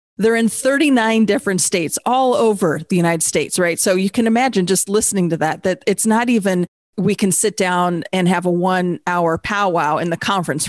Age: 40-59